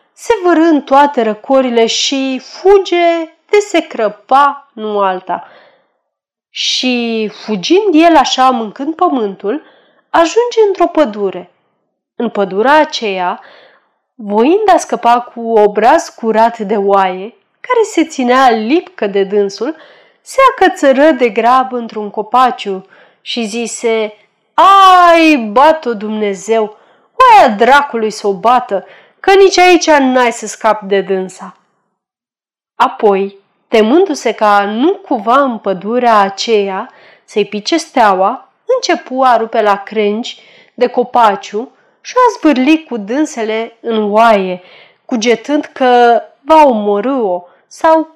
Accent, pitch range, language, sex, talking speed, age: native, 215-315 Hz, Romanian, female, 115 wpm, 30-49